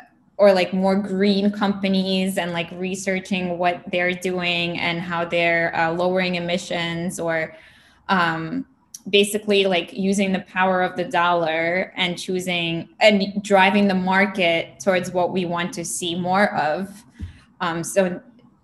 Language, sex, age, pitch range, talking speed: English, female, 10-29, 175-200 Hz, 140 wpm